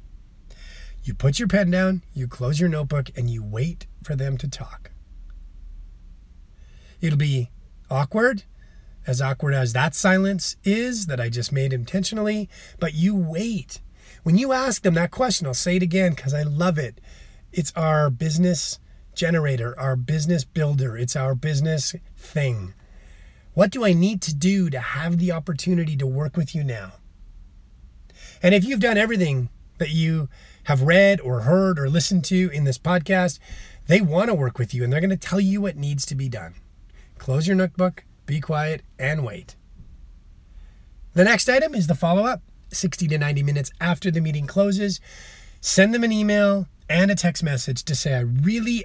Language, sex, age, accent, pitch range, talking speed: English, male, 30-49, American, 130-185 Hz, 170 wpm